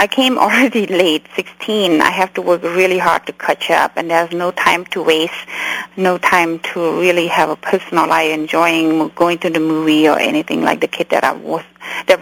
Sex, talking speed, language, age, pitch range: female, 205 wpm, English, 30-49, 165-190 Hz